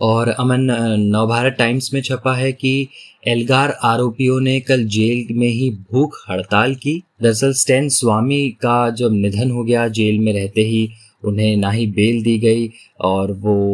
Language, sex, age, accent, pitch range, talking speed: Hindi, male, 20-39, native, 110-130 Hz, 165 wpm